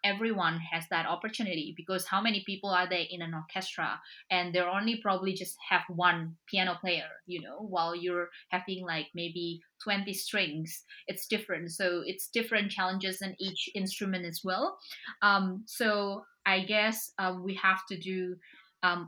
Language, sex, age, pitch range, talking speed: English, female, 20-39, 175-200 Hz, 165 wpm